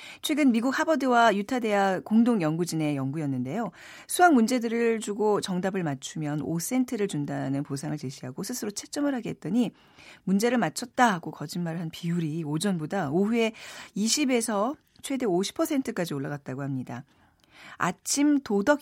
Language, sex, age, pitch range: Korean, female, 40-59, 150-240 Hz